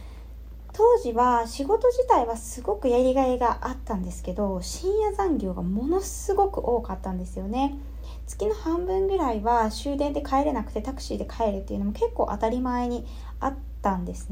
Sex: female